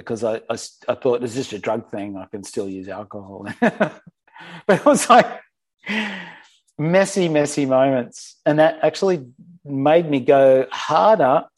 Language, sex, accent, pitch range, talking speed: English, male, Australian, 105-135 Hz, 150 wpm